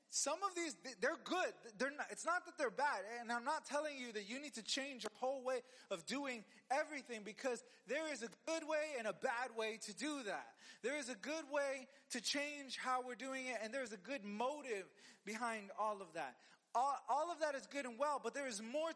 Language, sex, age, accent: English, male, 30-49, American